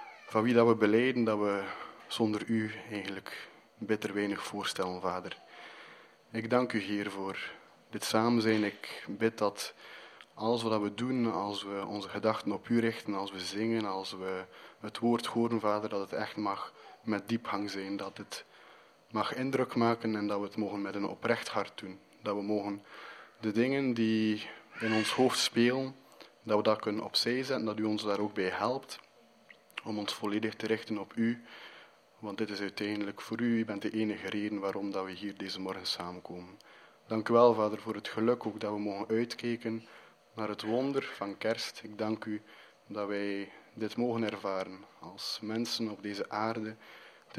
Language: Polish